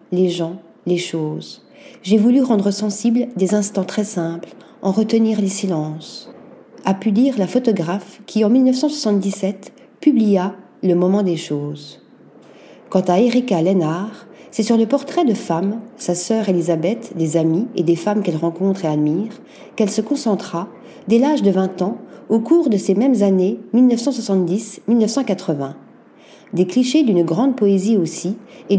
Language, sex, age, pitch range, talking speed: French, female, 40-59, 180-235 Hz, 150 wpm